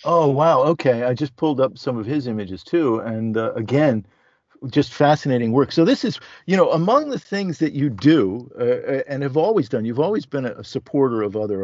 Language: English